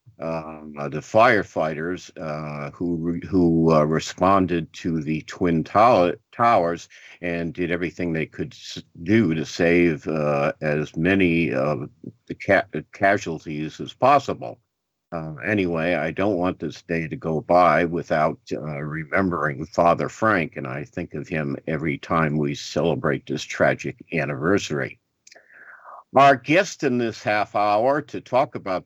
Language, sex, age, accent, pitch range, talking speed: English, male, 50-69, American, 80-105 Hz, 145 wpm